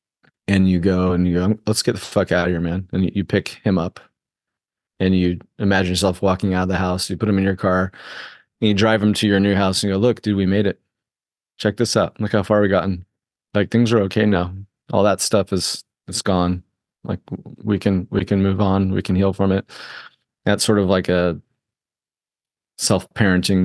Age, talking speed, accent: 30-49, 225 wpm, American